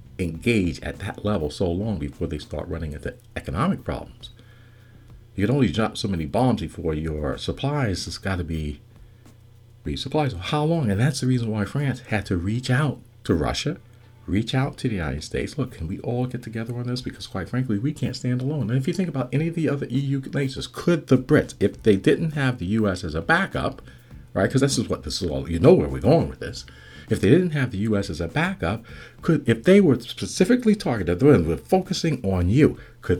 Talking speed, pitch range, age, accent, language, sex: 220 wpm, 90-130 Hz, 50-69, American, English, male